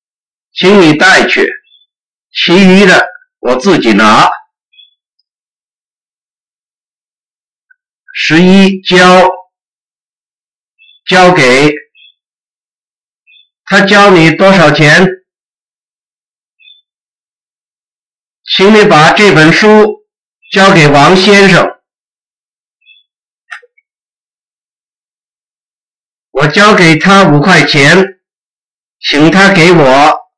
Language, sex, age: English, male, 50-69